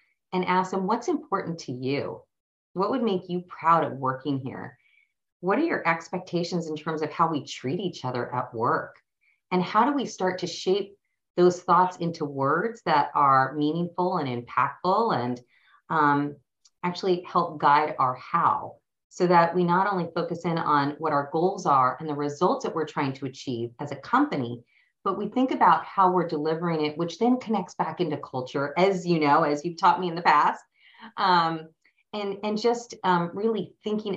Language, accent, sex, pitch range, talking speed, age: English, American, female, 150-195 Hz, 185 wpm, 40-59